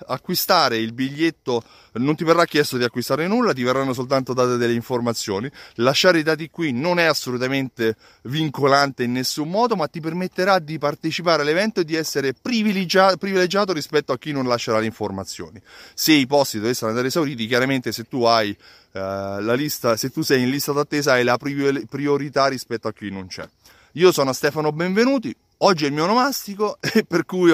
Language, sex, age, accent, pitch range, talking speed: Italian, male, 30-49, native, 120-165 Hz, 185 wpm